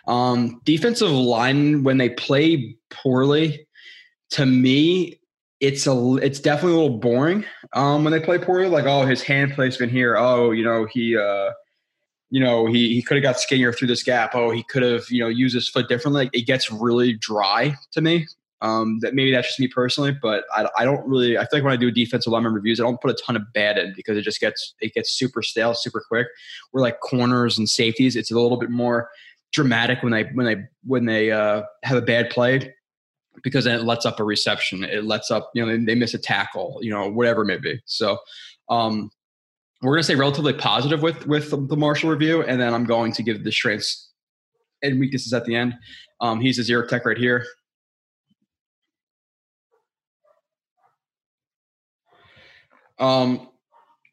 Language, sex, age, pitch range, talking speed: English, male, 20-39, 120-140 Hz, 195 wpm